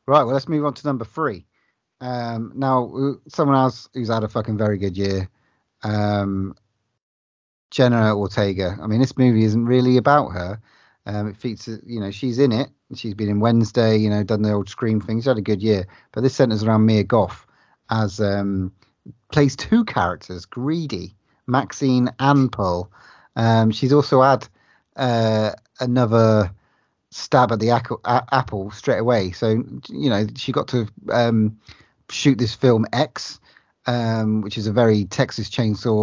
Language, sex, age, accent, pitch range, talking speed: English, male, 30-49, British, 105-130 Hz, 165 wpm